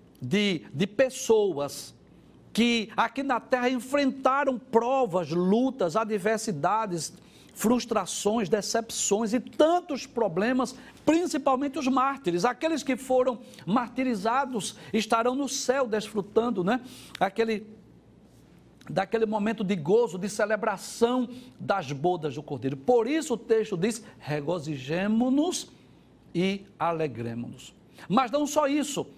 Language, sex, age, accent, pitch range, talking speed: Portuguese, male, 60-79, Brazilian, 190-255 Hz, 105 wpm